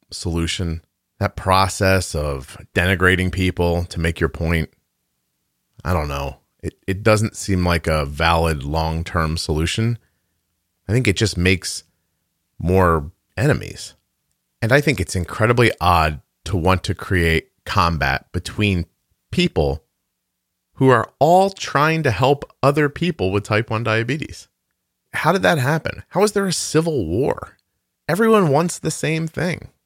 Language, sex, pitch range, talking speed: English, male, 80-110 Hz, 140 wpm